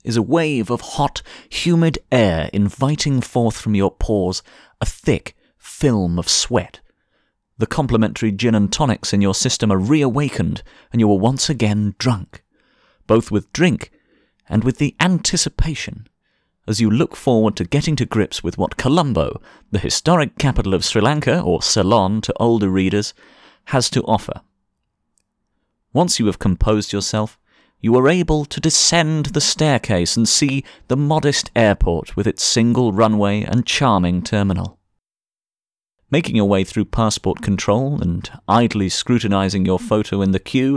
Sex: male